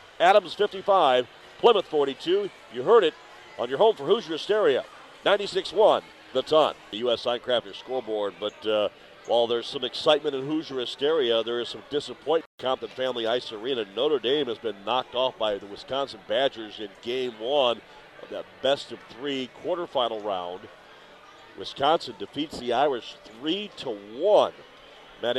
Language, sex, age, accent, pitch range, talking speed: English, male, 50-69, American, 115-155 Hz, 150 wpm